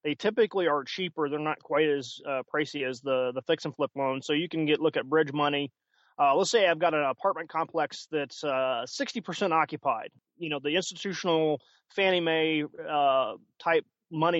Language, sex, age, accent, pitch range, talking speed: English, male, 30-49, American, 135-165 Hz, 190 wpm